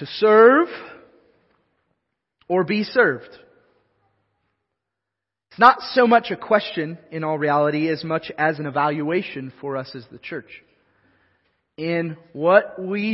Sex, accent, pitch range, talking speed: male, American, 145-200 Hz, 125 wpm